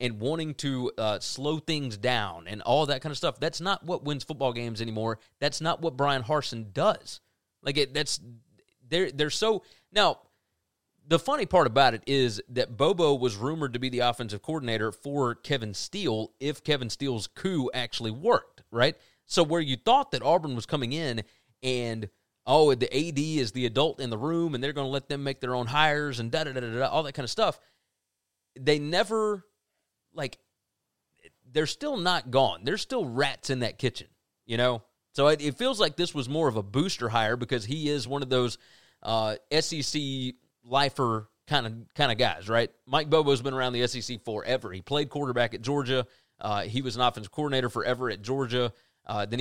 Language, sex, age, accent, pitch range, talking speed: English, male, 30-49, American, 115-150 Hz, 195 wpm